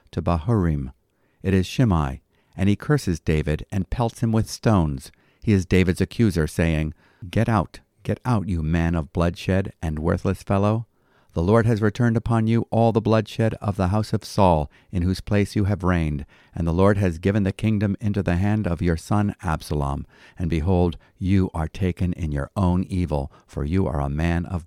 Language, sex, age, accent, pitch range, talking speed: English, male, 50-69, American, 80-105 Hz, 190 wpm